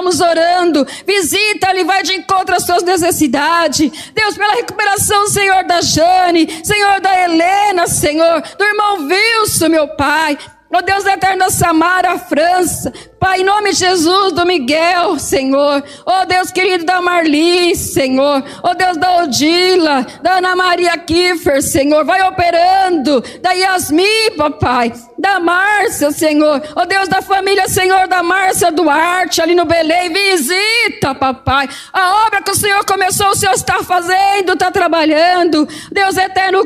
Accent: Brazilian